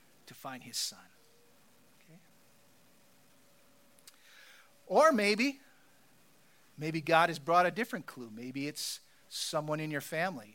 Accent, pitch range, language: American, 130-165 Hz, English